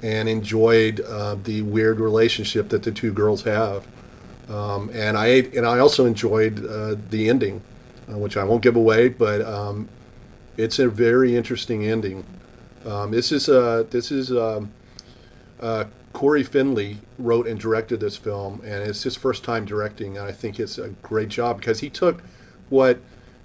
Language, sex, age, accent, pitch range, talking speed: English, male, 40-59, American, 110-125 Hz, 170 wpm